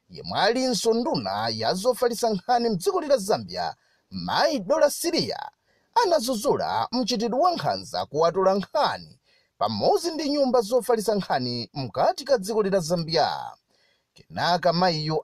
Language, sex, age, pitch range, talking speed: English, male, 30-49, 185-285 Hz, 100 wpm